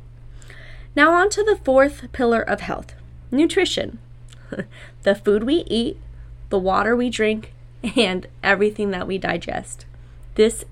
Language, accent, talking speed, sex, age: English, American, 130 wpm, female, 20-39